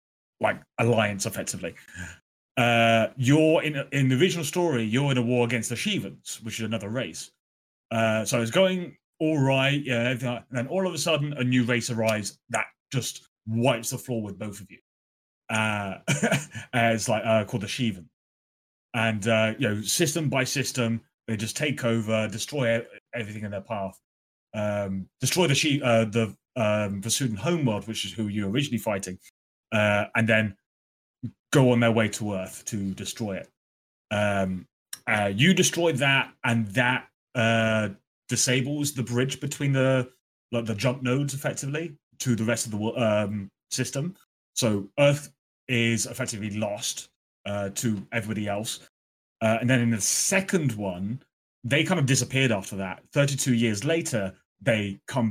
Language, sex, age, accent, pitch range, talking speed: English, male, 30-49, British, 105-130 Hz, 165 wpm